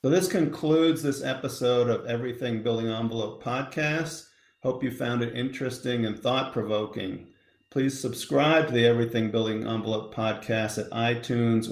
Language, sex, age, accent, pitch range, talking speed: English, male, 50-69, American, 115-130 Hz, 145 wpm